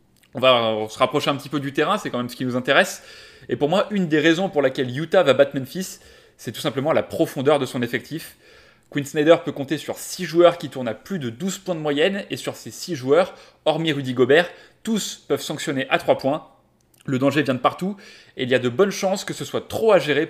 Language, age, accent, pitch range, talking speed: French, 20-39, French, 130-170 Hz, 250 wpm